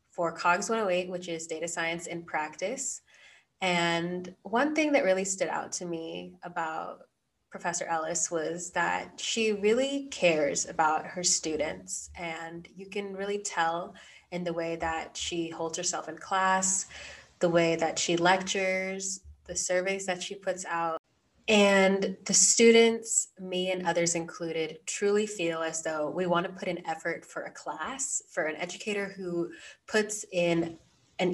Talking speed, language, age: 155 wpm, English, 20-39